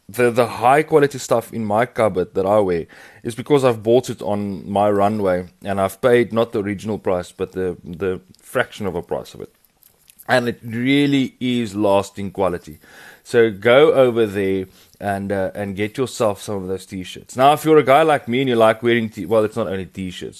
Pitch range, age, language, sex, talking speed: 100-130 Hz, 20-39, English, male, 210 wpm